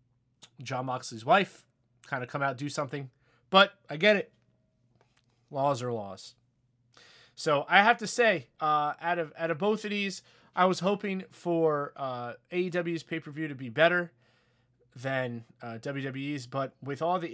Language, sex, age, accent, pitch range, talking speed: English, male, 20-39, American, 125-185 Hz, 160 wpm